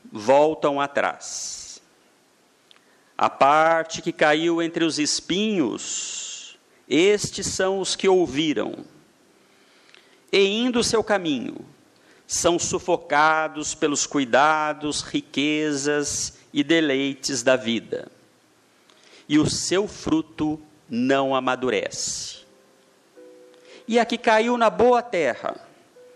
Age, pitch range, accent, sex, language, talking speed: 50-69, 140-190 Hz, Brazilian, male, Portuguese, 95 wpm